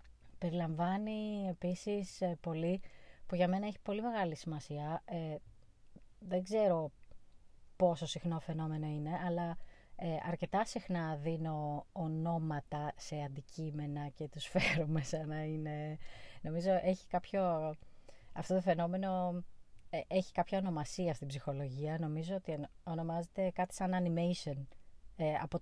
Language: Greek